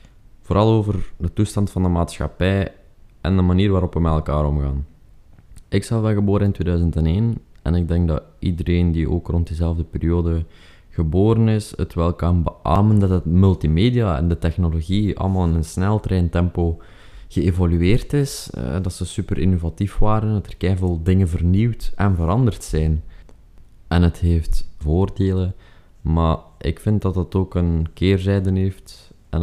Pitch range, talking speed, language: 80-95 Hz, 155 wpm, Dutch